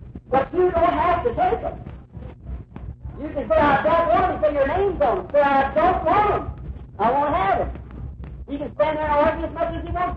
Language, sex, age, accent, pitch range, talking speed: English, male, 50-69, American, 310-365 Hz, 230 wpm